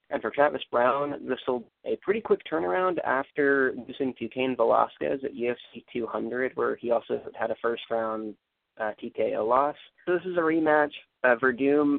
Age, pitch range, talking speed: 30-49, 115-145 Hz, 165 wpm